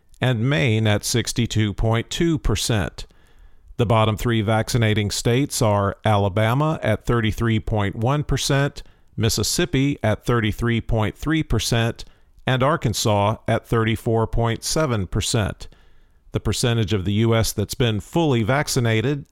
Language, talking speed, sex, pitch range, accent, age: English, 90 wpm, male, 110-135 Hz, American, 50-69